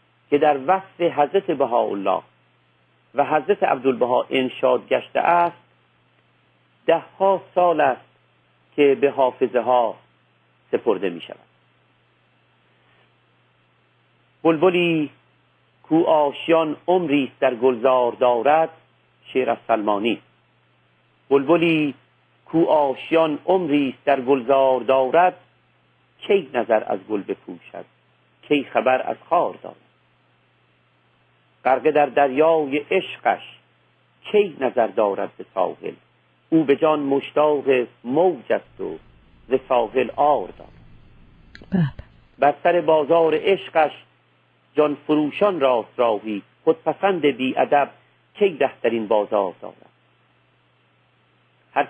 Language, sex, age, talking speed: Persian, male, 50-69, 100 wpm